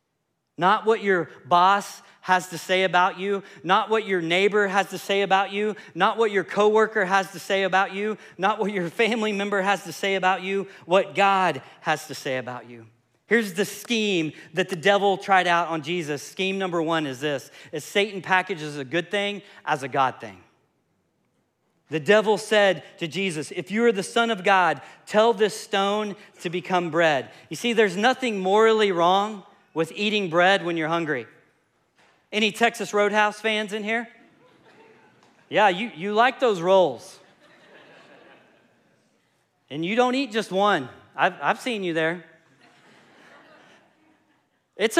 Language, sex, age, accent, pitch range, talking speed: English, male, 40-59, American, 170-215 Hz, 165 wpm